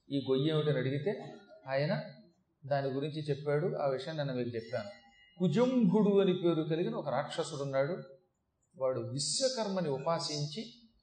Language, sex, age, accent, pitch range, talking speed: Telugu, male, 40-59, native, 140-180 Hz, 120 wpm